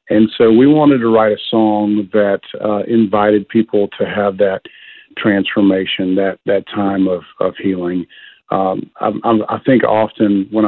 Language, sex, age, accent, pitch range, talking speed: English, male, 50-69, American, 100-115 Hz, 155 wpm